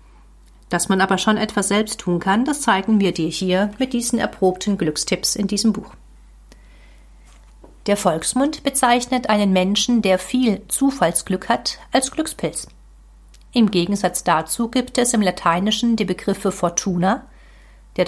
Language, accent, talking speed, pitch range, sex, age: German, German, 140 wpm, 185-235 Hz, female, 40-59